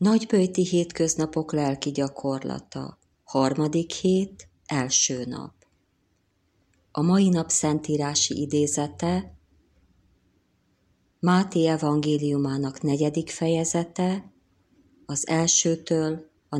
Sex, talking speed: female, 70 wpm